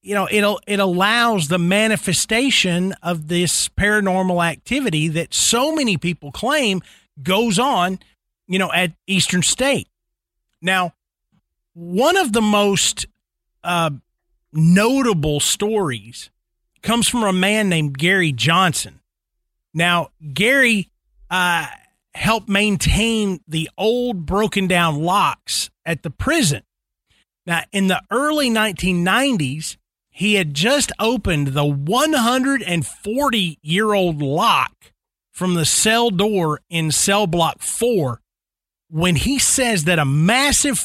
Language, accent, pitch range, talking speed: English, American, 165-225 Hz, 115 wpm